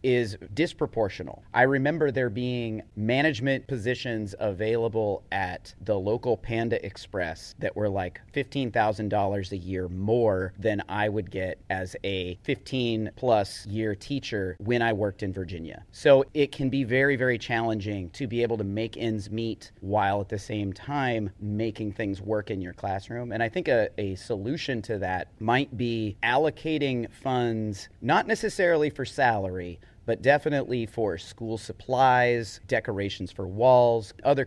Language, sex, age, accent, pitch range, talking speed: English, male, 30-49, American, 100-125 Hz, 150 wpm